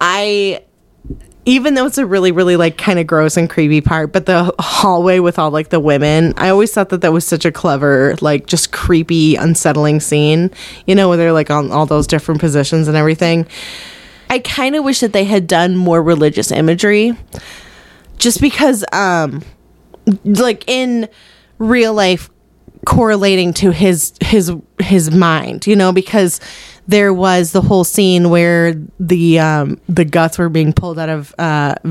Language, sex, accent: English, female, American